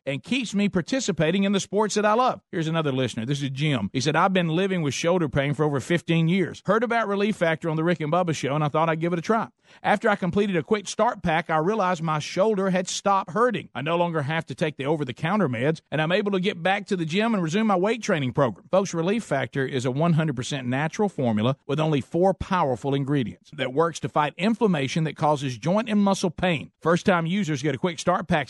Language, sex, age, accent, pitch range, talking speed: English, male, 50-69, American, 150-200 Hz, 245 wpm